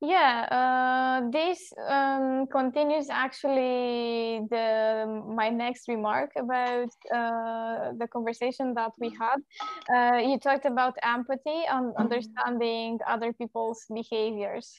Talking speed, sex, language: 110 wpm, female, English